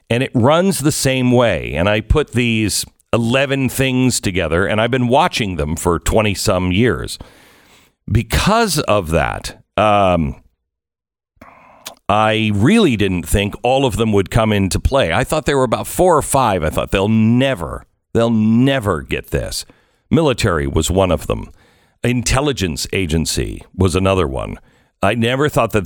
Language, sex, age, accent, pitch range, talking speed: English, male, 50-69, American, 95-130 Hz, 155 wpm